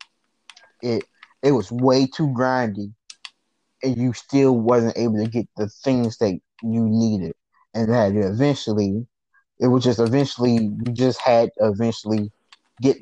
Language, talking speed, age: English, 145 wpm, 20-39